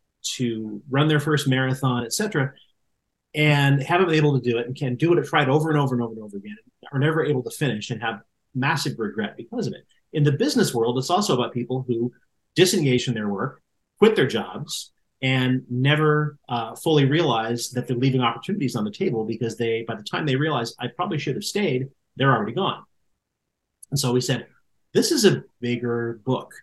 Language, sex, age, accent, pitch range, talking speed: English, male, 30-49, American, 115-150 Hz, 205 wpm